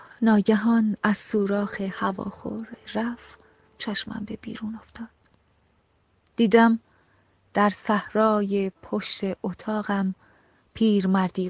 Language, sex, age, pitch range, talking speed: Persian, female, 30-49, 170-215 Hz, 80 wpm